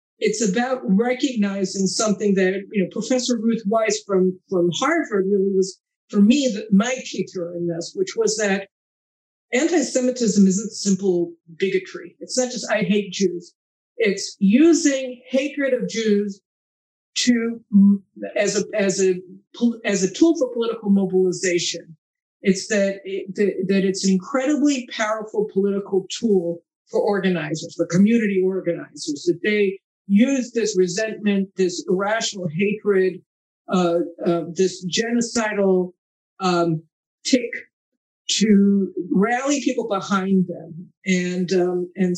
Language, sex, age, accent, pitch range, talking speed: English, female, 50-69, American, 185-235 Hz, 125 wpm